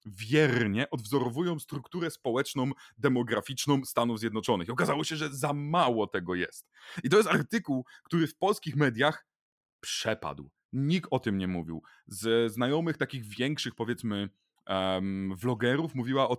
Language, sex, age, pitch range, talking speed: Polish, male, 30-49, 110-150 Hz, 135 wpm